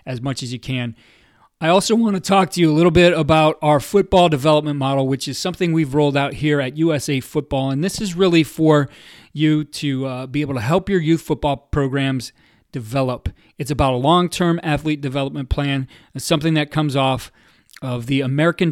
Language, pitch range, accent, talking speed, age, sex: English, 130-155 Hz, American, 200 wpm, 30-49, male